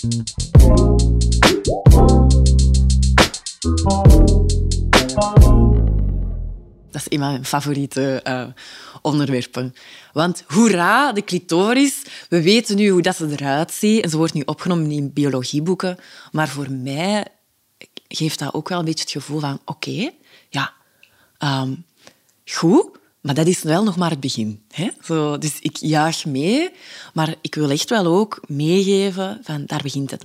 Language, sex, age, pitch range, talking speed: Dutch, female, 20-39, 130-170 Hz, 135 wpm